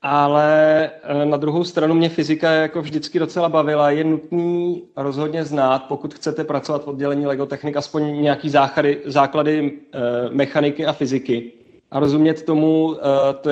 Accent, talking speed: native, 135 wpm